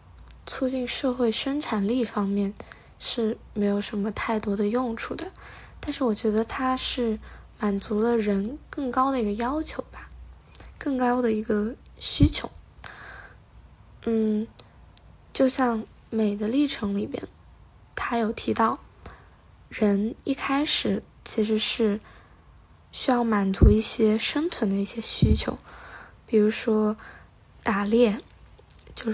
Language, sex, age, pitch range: Chinese, female, 10-29, 210-255 Hz